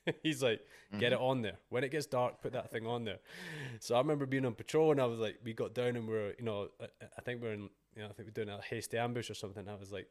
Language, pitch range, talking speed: English, 105-125 Hz, 295 wpm